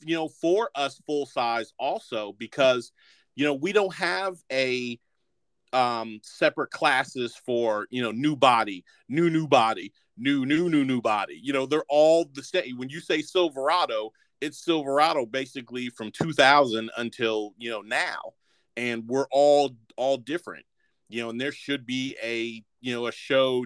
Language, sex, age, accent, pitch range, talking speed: English, male, 40-59, American, 115-140 Hz, 165 wpm